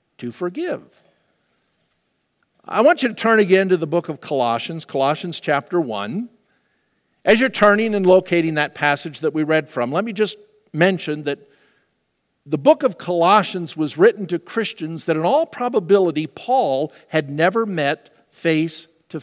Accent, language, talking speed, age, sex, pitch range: American, English, 155 wpm, 50-69, male, 165-220 Hz